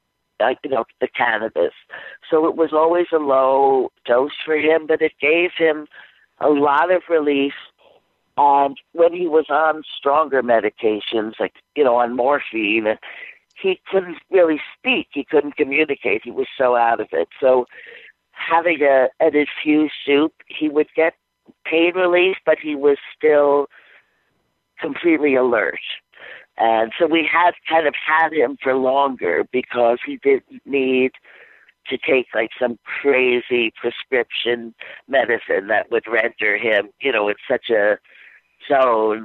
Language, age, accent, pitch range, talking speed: English, 50-69, American, 130-165 Hz, 145 wpm